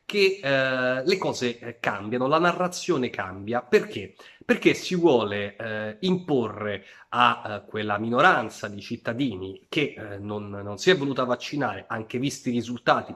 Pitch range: 105-145 Hz